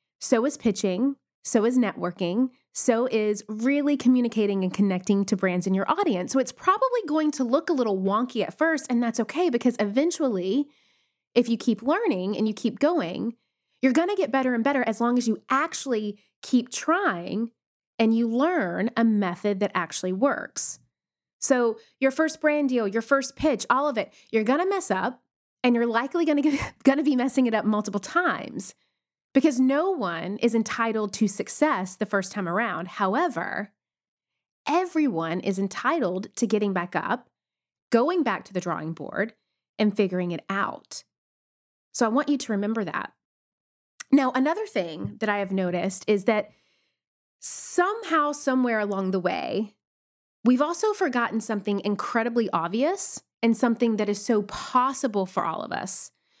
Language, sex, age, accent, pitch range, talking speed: English, female, 30-49, American, 205-275 Hz, 165 wpm